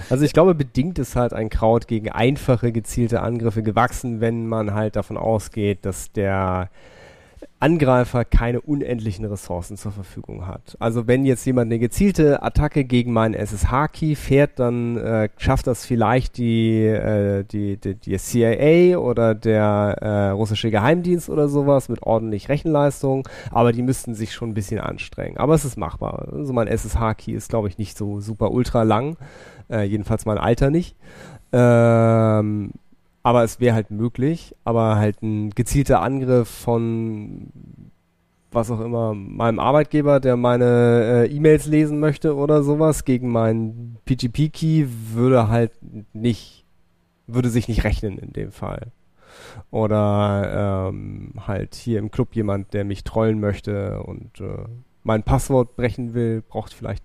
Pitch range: 105-125 Hz